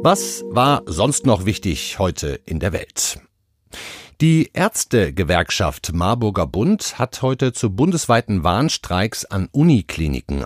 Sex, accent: male, German